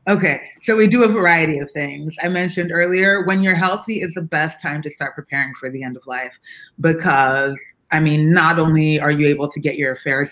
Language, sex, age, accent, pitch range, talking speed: English, female, 30-49, American, 130-160 Hz, 220 wpm